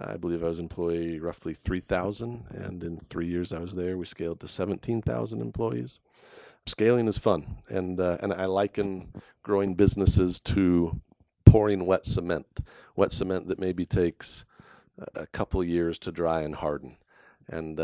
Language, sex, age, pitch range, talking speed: English, male, 40-59, 85-95 Hz, 155 wpm